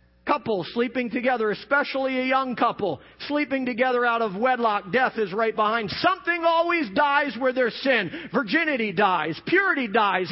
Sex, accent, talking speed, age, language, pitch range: male, American, 150 wpm, 40-59, English, 240-320 Hz